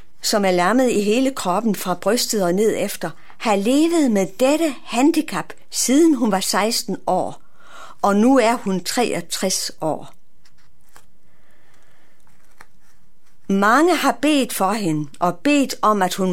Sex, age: female, 60-79